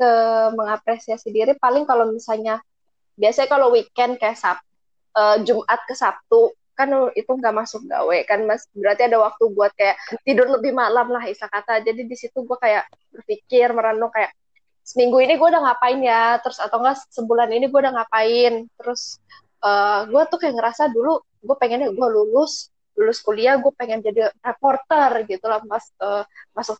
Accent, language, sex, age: native, Indonesian, female, 20-39